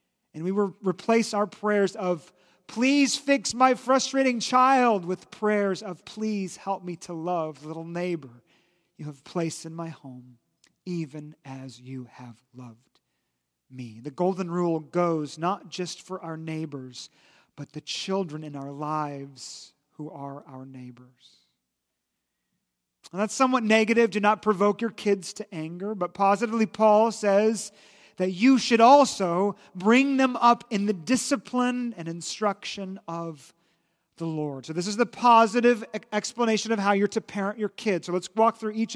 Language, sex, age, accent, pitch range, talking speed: English, male, 40-59, American, 165-215 Hz, 155 wpm